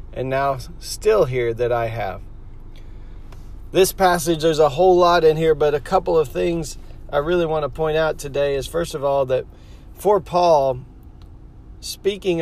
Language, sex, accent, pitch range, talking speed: English, male, American, 140-180 Hz, 170 wpm